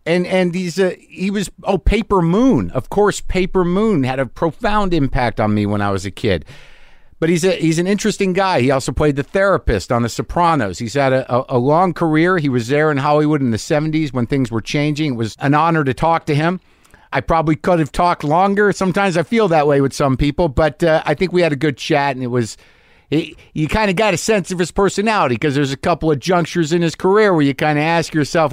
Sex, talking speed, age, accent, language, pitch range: male, 245 wpm, 50-69, American, English, 130-175 Hz